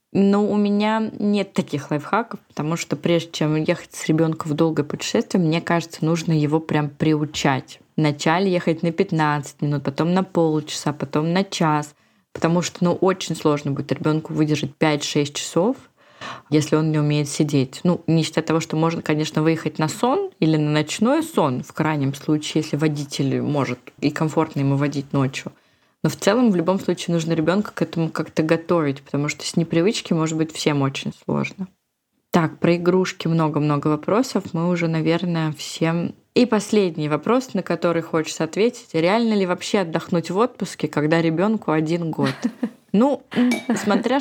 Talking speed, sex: 165 wpm, female